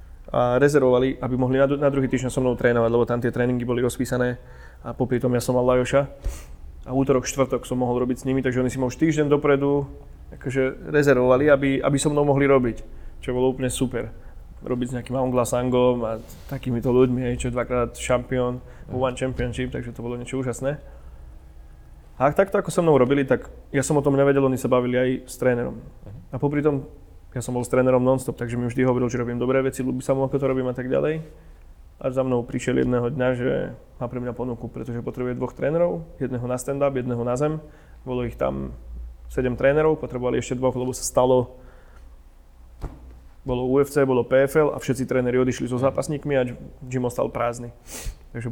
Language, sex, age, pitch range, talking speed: Slovak, male, 20-39, 120-135 Hz, 195 wpm